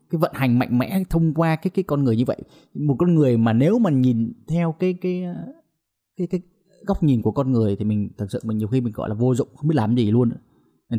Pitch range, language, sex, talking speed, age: 110-155 Hz, Vietnamese, male, 260 wpm, 20-39